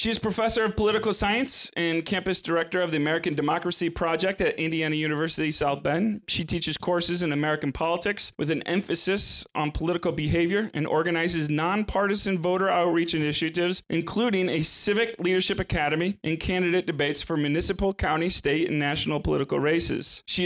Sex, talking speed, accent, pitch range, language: male, 160 wpm, American, 160-190 Hz, English